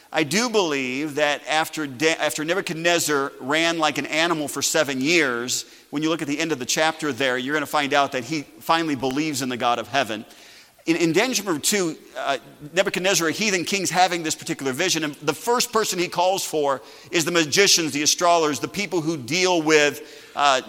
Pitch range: 150-185 Hz